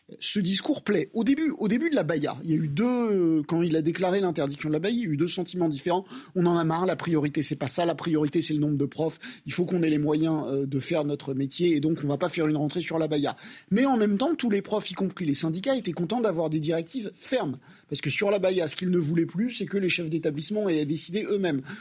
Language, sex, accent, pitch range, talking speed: French, male, French, 160-205 Hz, 285 wpm